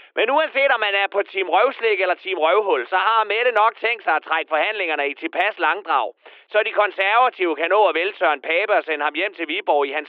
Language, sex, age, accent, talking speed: Danish, male, 30-49, native, 215 wpm